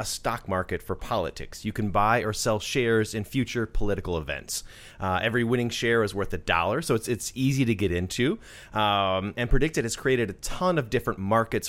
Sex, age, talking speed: male, 30-49, 205 wpm